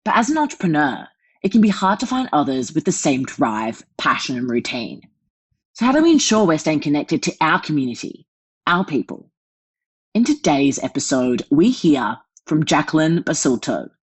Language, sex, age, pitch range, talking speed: English, female, 30-49, 130-205 Hz, 165 wpm